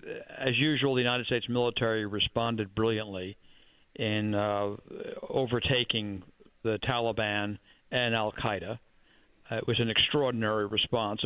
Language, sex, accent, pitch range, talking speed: English, male, American, 105-125 Hz, 110 wpm